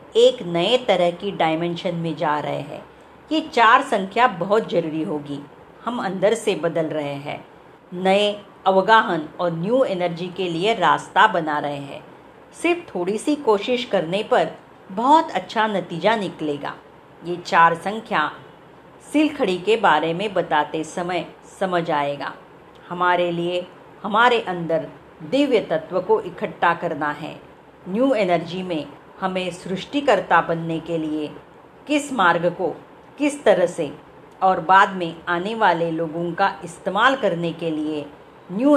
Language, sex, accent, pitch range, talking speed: Marathi, female, native, 165-210 Hz, 125 wpm